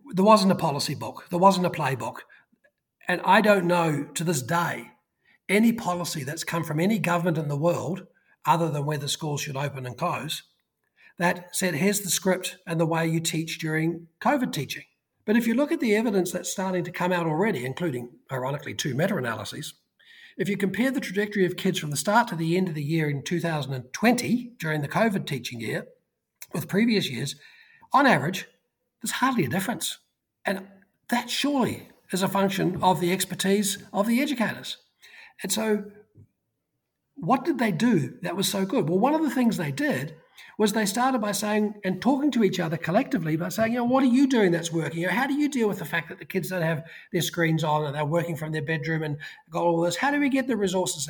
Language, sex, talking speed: English, male, 210 wpm